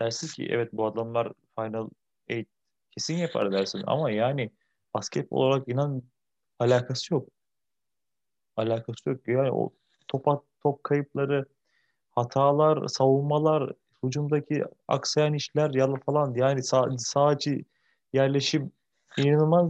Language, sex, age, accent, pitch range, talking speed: Turkish, male, 30-49, native, 120-155 Hz, 115 wpm